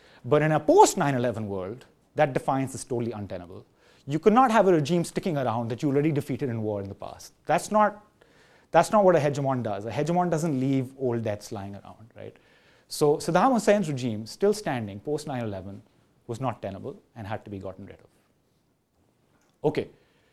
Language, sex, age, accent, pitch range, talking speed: English, male, 30-49, Indian, 105-145 Hz, 185 wpm